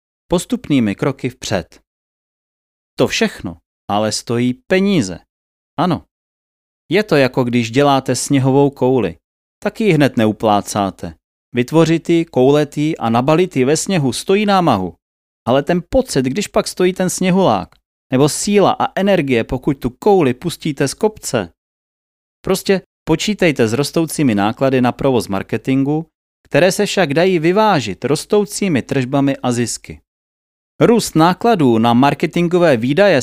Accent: native